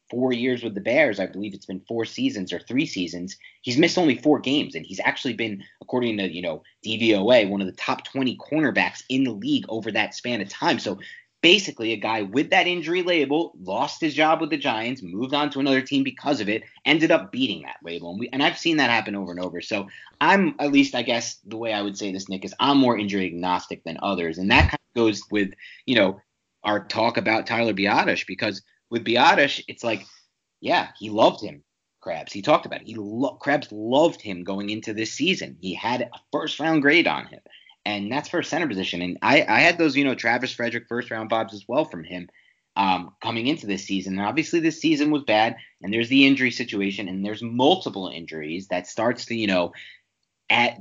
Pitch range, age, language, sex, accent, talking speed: 100-140 Hz, 30-49, English, male, American, 220 wpm